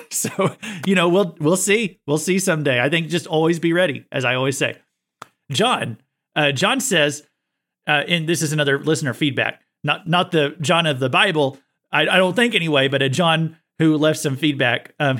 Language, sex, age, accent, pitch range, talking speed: English, male, 30-49, American, 145-180 Hz, 195 wpm